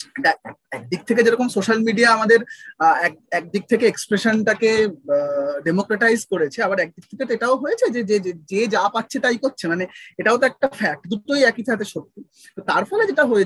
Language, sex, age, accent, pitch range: Bengali, male, 30-49, native, 195-270 Hz